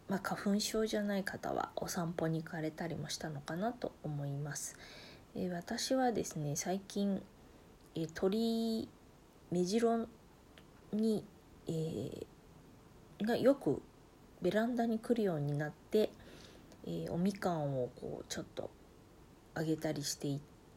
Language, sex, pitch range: Japanese, female, 150-210 Hz